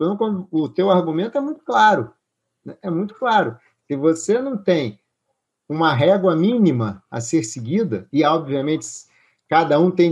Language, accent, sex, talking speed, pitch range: Portuguese, Brazilian, male, 150 wpm, 160-225 Hz